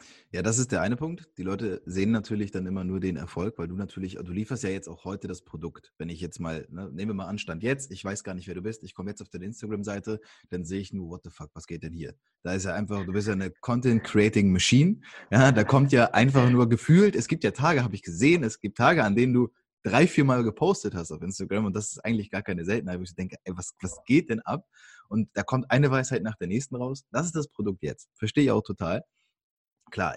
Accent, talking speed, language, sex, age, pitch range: German, 260 wpm, English, male, 20-39, 95-120 Hz